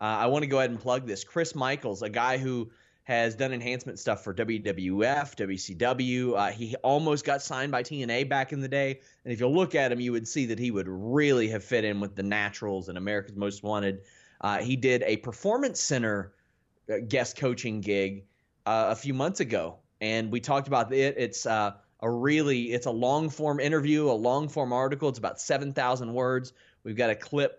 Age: 30-49